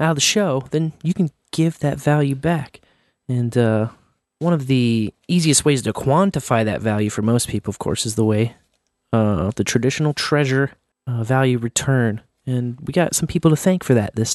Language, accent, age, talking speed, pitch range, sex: English, American, 30-49, 195 wpm, 115-160 Hz, male